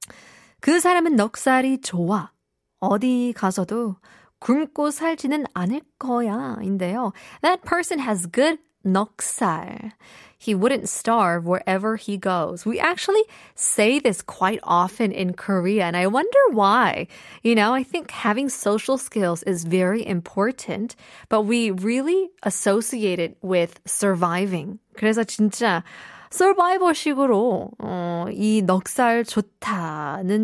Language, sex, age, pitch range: Korean, female, 20-39, 190-270 Hz